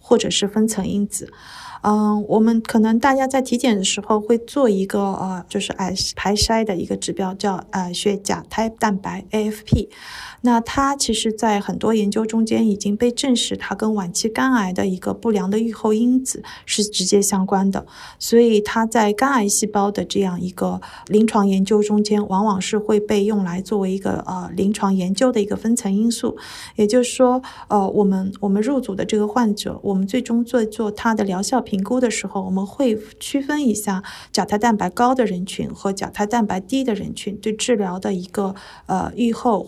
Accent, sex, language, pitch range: native, female, Chinese, 195-230 Hz